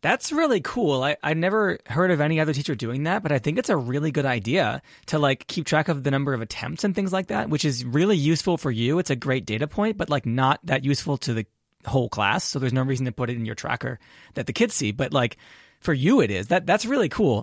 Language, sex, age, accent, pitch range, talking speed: English, male, 20-39, American, 125-165 Hz, 270 wpm